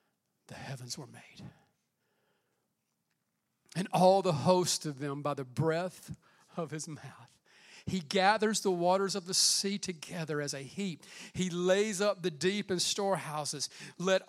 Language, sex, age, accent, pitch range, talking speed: English, male, 40-59, American, 175-215 Hz, 145 wpm